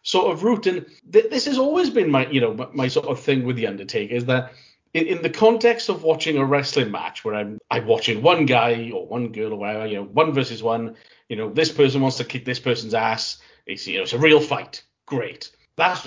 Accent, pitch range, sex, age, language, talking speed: British, 125-160 Hz, male, 40-59, English, 240 wpm